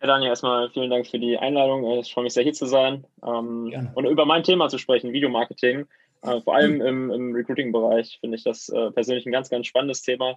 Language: German